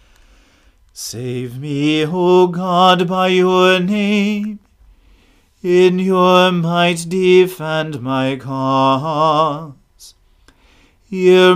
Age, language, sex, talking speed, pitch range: 40-59, English, male, 75 wpm, 155-185 Hz